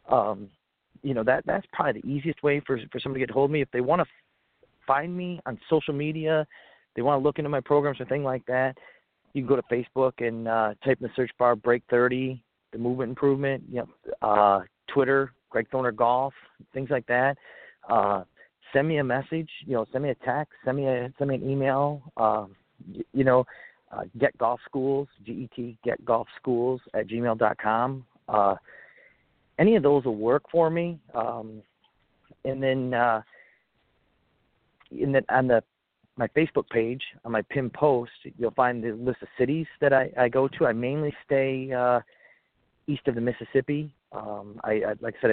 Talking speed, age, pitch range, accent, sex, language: 195 wpm, 40-59, 115-135 Hz, American, male, English